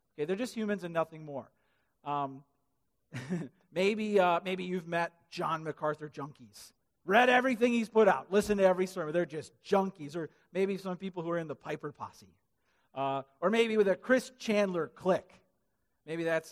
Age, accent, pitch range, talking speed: 40-59, American, 145-205 Hz, 170 wpm